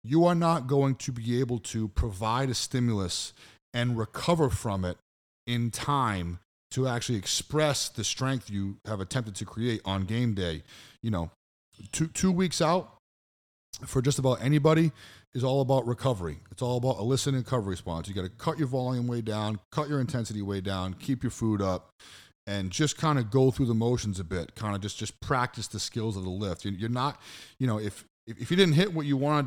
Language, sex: English, male